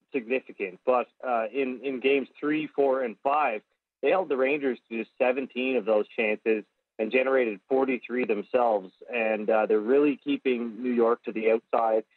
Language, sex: English, male